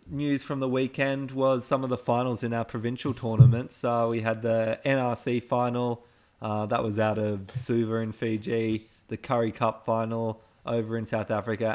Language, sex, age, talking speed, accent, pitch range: English, male, 20-39, 180 wpm, Australian, 115-130 Hz